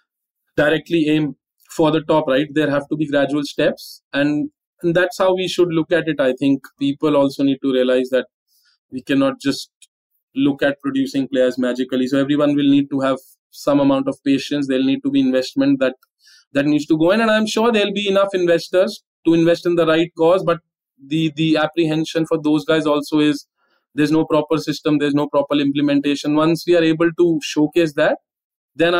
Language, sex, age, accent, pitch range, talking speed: English, male, 20-39, Indian, 135-170 Hz, 200 wpm